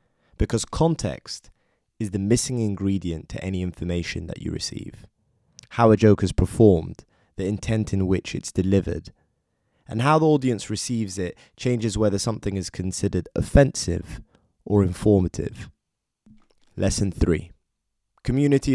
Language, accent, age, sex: English, British, 20-39, male